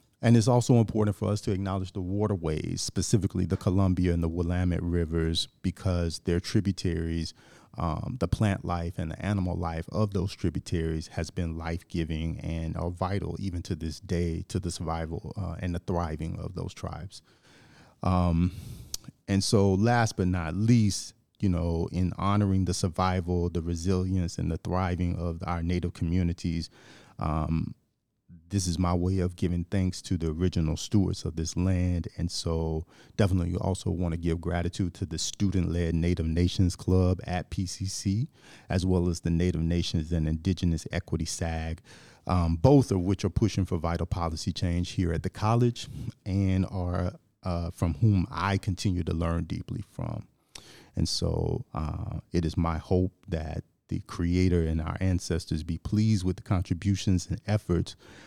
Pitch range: 85-100 Hz